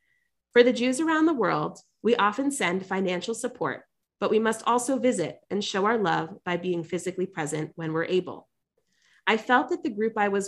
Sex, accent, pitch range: female, American, 175-225 Hz